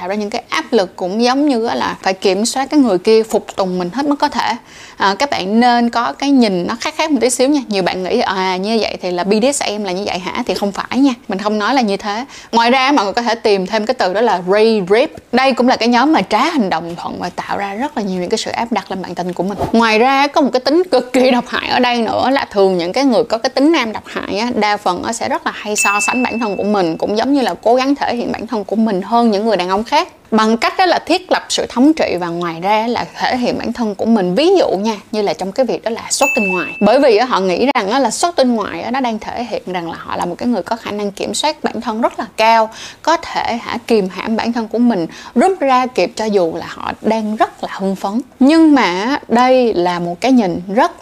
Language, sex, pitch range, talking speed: Vietnamese, female, 200-260 Hz, 290 wpm